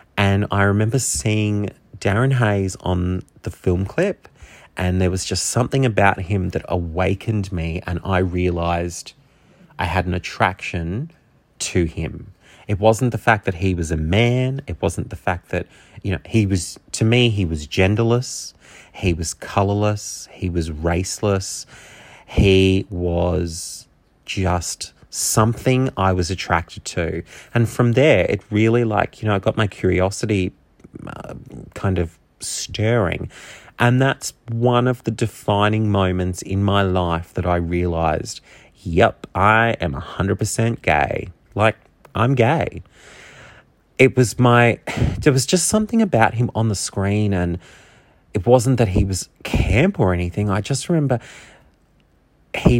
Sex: male